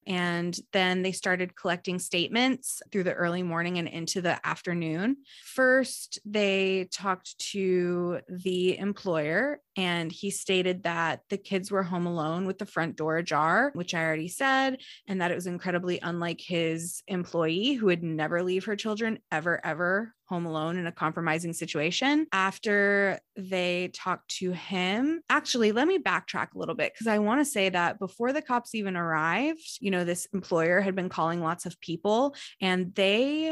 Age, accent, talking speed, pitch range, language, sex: 20-39, American, 170 wpm, 170-205 Hz, English, female